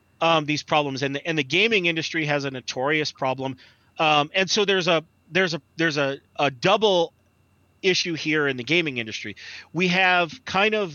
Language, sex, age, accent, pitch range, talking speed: English, male, 30-49, American, 125-165 Hz, 185 wpm